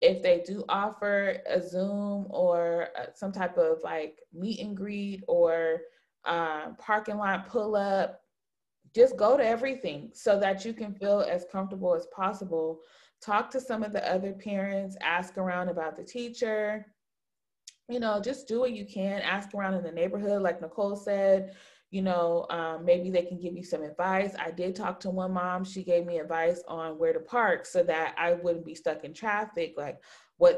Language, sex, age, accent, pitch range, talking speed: English, female, 20-39, American, 175-220 Hz, 185 wpm